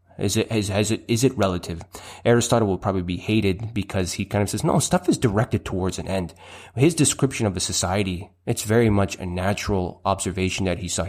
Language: English